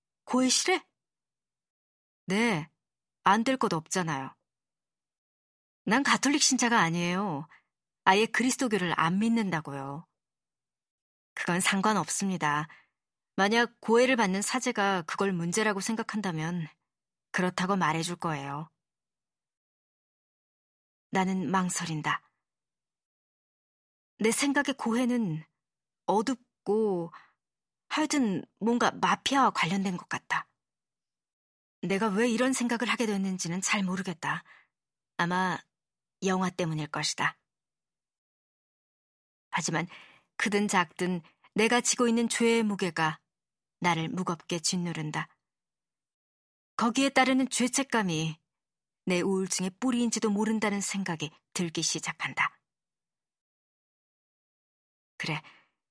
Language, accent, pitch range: Korean, native, 170-230 Hz